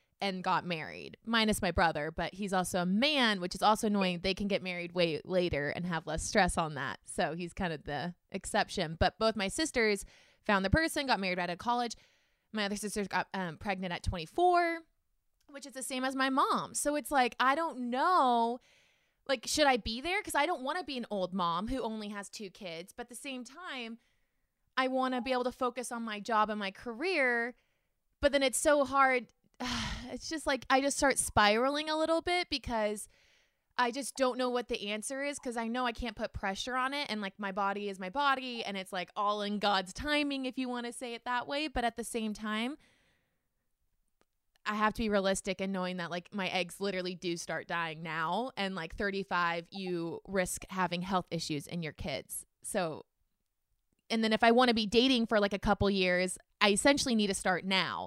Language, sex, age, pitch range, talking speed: English, female, 20-39, 185-255 Hz, 220 wpm